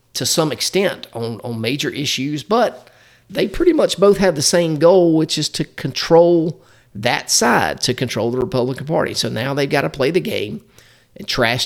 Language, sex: English, male